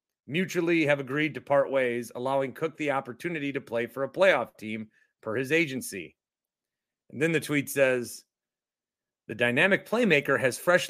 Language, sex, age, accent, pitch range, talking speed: English, male, 30-49, American, 120-170 Hz, 160 wpm